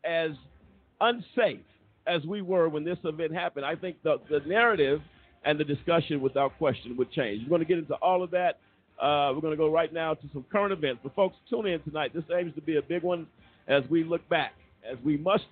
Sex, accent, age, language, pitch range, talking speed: male, American, 50-69, English, 145-190 Hz, 220 wpm